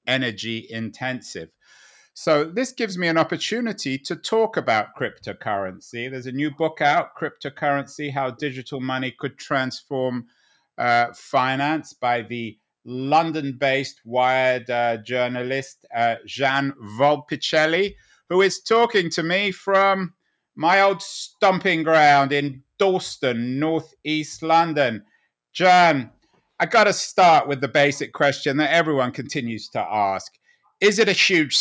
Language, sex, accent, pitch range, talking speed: English, male, British, 130-170 Hz, 125 wpm